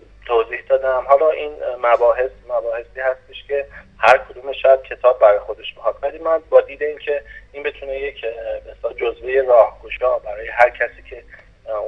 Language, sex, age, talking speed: Persian, male, 30-49, 155 wpm